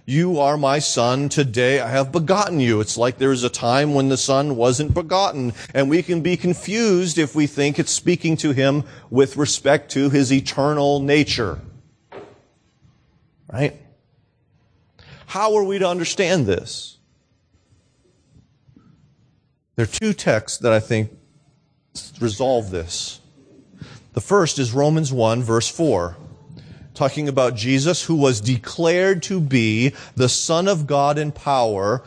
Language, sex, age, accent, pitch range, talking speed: English, male, 40-59, American, 125-160 Hz, 140 wpm